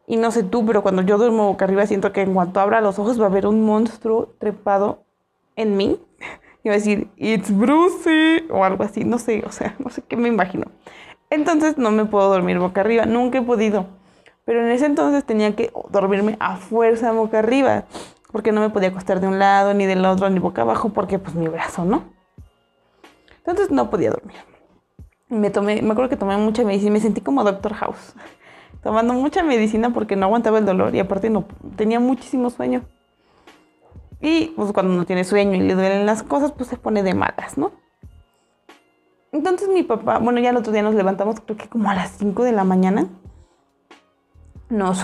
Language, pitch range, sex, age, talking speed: Spanish, 200-245 Hz, female, 20-39, 205 wpm